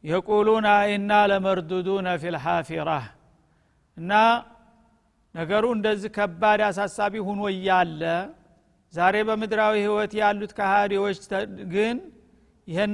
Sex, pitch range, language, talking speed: male, 195-215 Hz, Amharic, 95 wpm